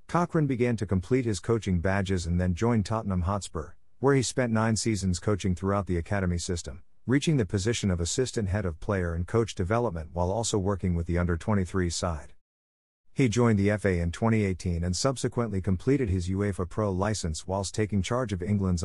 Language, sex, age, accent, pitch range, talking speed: English, male, 50-69, American, 90-115 Hz, 190 wpm